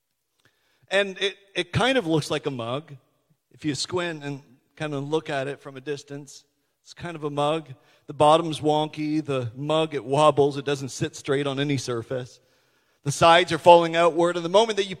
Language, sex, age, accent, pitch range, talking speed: English, male, 40-59, American, 140-185 Hz, 200 wpm